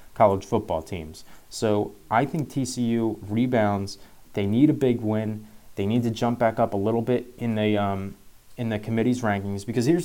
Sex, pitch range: male, 100-125 Hz